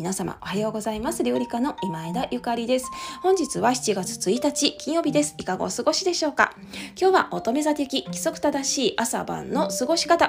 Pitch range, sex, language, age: 200-285 Hz, female, Japanese, 20-39